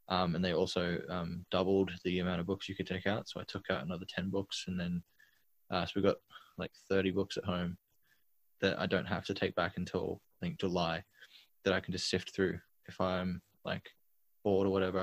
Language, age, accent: English, 20-39, Australian